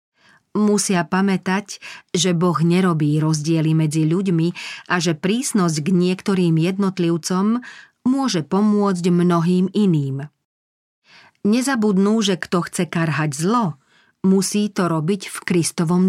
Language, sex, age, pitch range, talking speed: Slovak, female, 40-59, 160-195 Hz, 110 wpm